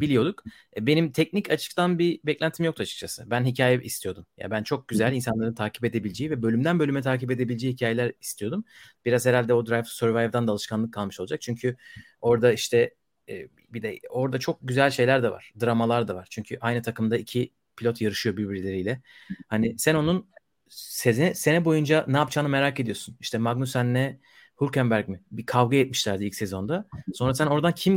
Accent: native